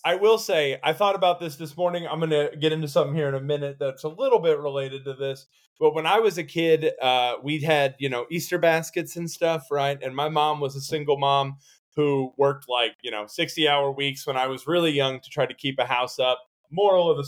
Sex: male